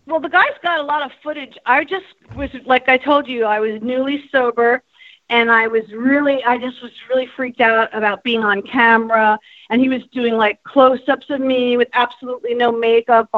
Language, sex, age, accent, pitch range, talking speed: English, female, 40-59, American, 210-255 Hz, 200 wpm